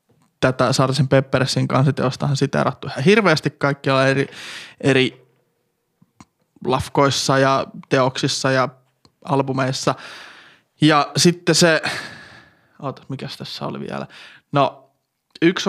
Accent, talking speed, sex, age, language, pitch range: native, 100 wpm, male, 20-39, Finnish, 135-155 Hz